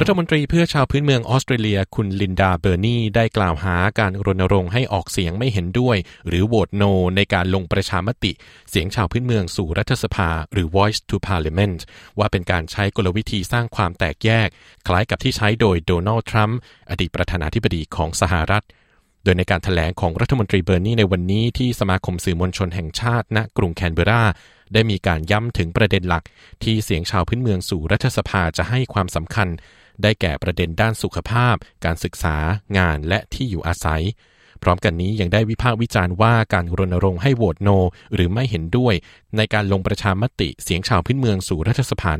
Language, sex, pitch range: Thai, male, 90-110 Hz